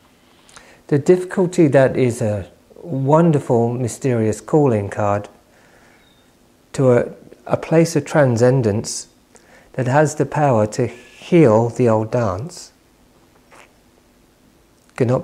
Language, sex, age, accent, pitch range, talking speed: English, male, 40-59, British, 110-140 Hz, 100 wpm